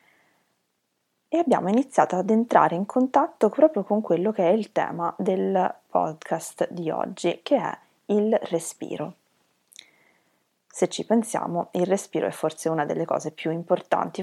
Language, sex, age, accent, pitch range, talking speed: Italian, female, 20-39, native, 170-210 Hz, 145 wpm